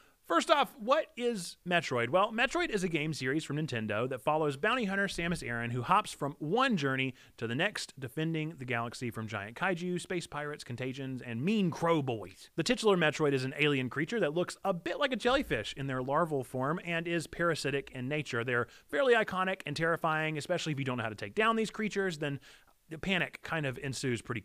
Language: English